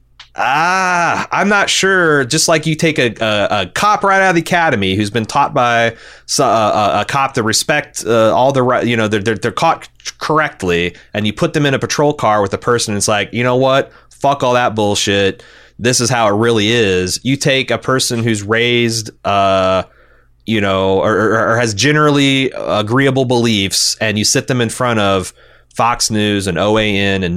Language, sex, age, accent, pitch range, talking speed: English, male, 30-49, American, 100-130 Hz, 200 wpm